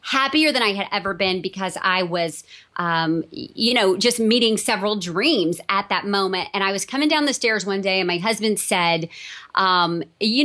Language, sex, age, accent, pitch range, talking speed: English, female, 30-49, American, 185-225 Hz, 195 wpm